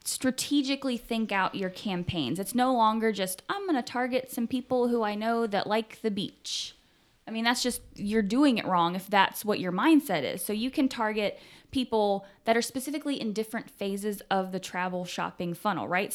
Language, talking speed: English, 195 wpm